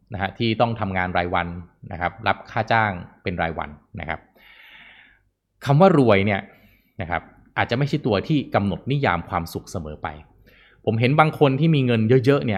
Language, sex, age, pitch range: Thai, male, 20-39, 95-125 Hz